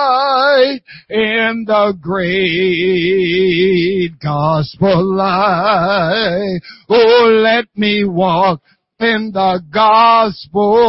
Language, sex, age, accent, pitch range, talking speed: English, male, 60-79, American, 185-225 Hz, 65 wpm